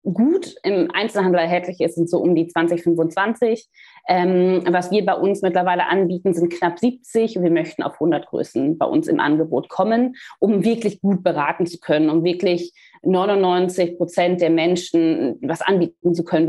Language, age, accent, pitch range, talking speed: German, 20-39, German, 170-200 Hz, 165 wpm